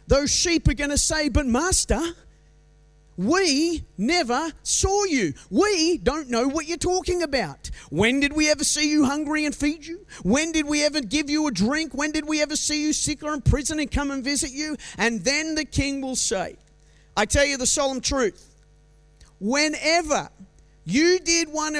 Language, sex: English, male